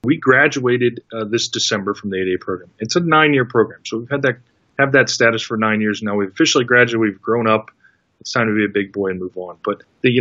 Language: English